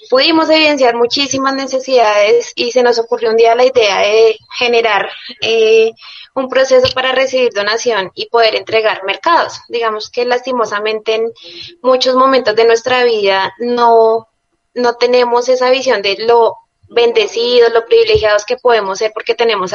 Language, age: Spanish, 20-39